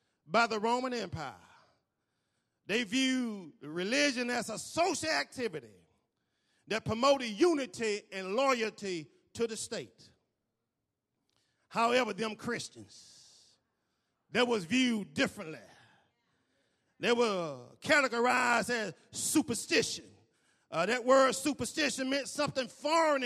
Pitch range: 235-305 Hz